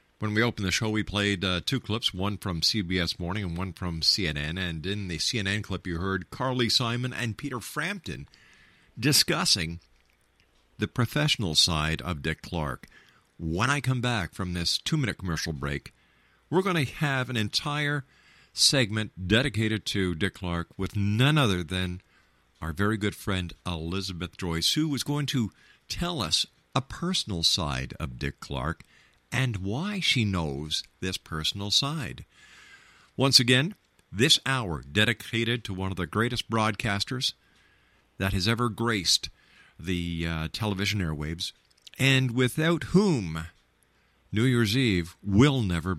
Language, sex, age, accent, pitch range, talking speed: English, male, 50-69, American, 85-125 Hz, 145 wpm